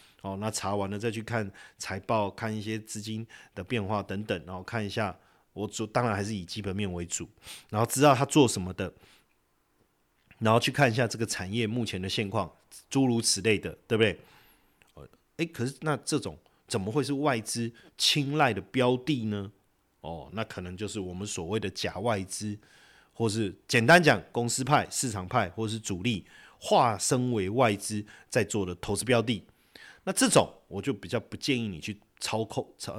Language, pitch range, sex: Chinese, 100-130 Hz, male